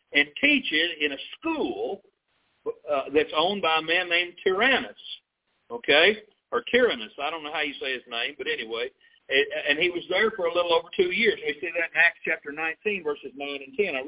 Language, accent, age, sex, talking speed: English, American, 50-69, male, 215 wpm